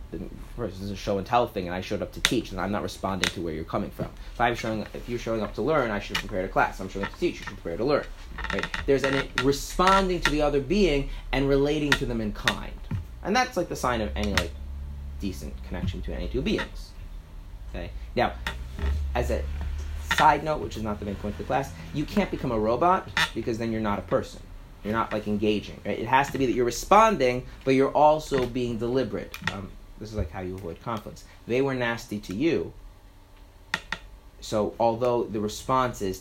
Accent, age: American, 30-49